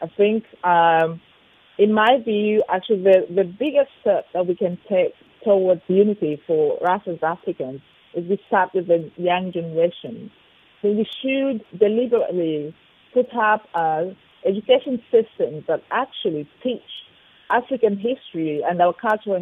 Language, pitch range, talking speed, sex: English, 175-220 Hz, 140 wpm, female